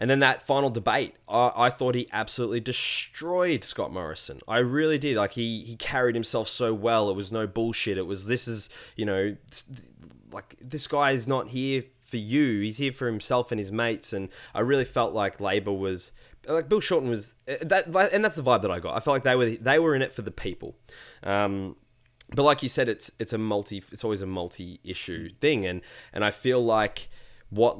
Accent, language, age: Australian, English, 20-39